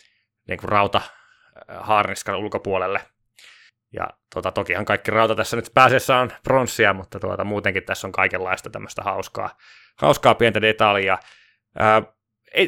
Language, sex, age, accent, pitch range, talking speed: Finnish, male, 20-39, native, 100-130 Hz, 135 wpm